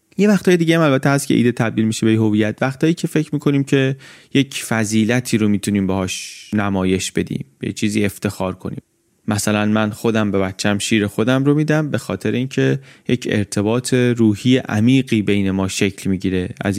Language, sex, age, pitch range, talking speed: Persian, male, 30-49, 105-130 Hz, 175 wpm